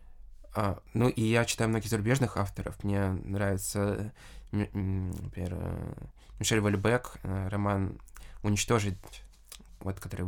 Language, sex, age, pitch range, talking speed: Russian, male, 20-39, 95-105 Hz, 100 wpm